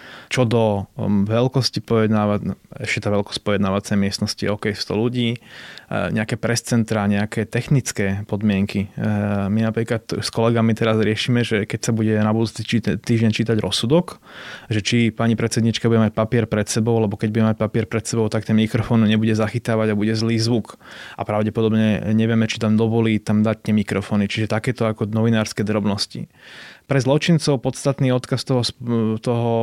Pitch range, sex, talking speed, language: 105-115 Hz, male, 160 wpm, Slovak